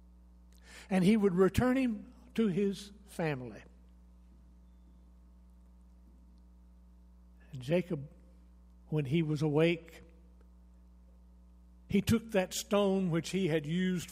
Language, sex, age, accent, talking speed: English, male, 60-79, American, 90 wpm